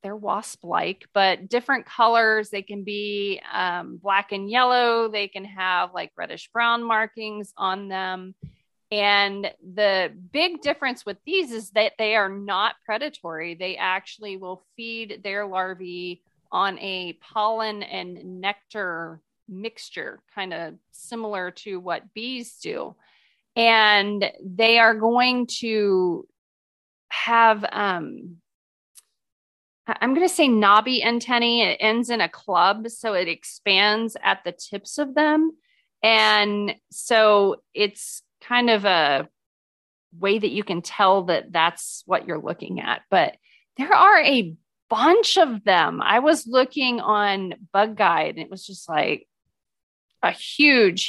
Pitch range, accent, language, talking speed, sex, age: 185-230 Hz, American, English, 135 wpm, female, 30-49